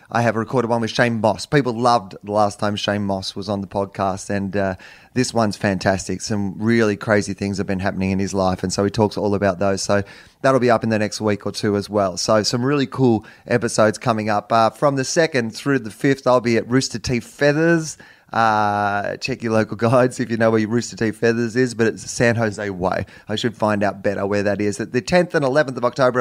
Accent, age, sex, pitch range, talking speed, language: Australian, 30-49, male, 105-130 Hz, 240 wpm, English